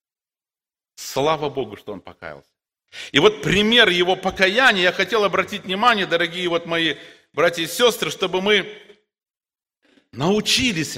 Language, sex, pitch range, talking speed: Russian, male, 170-255 Hz, 125 wpm